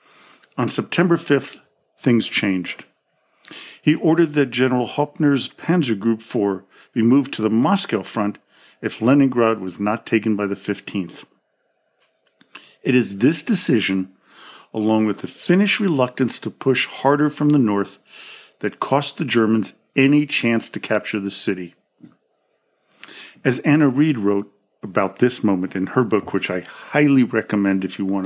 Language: English